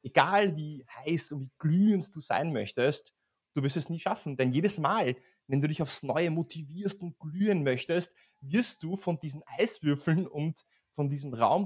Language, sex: German, male